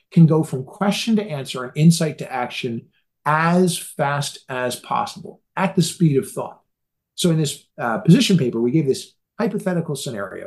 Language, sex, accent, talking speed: English, male, American, 170 wpm